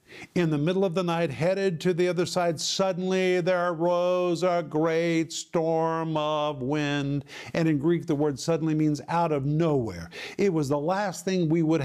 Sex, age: male, 50-69